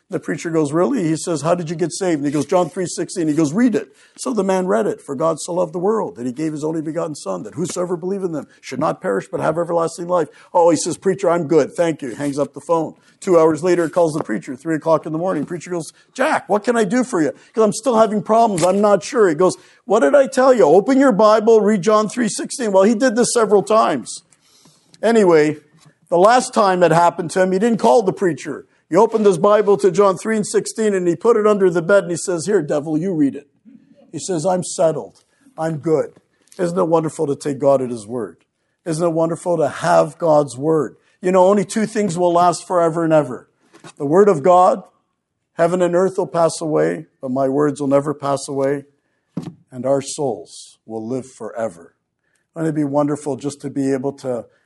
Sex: male